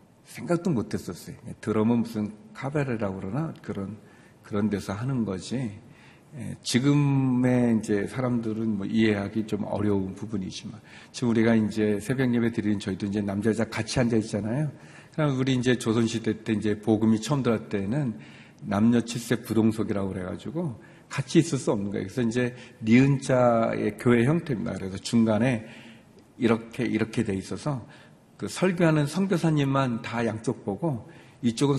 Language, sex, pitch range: Korean, male, 105-135 Hz